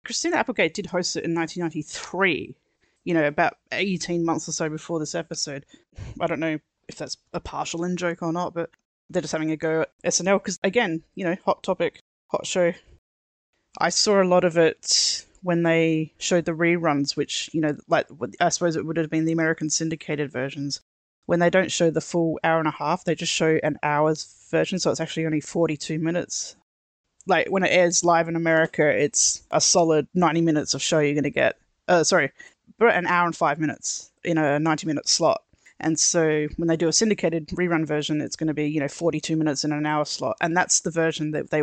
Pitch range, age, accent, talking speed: 150-175 Hz, 20-39, Australian, 210 wpm